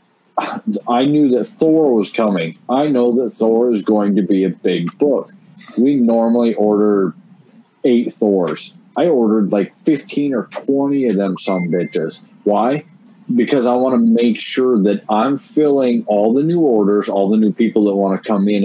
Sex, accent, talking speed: male, American, 175 wpm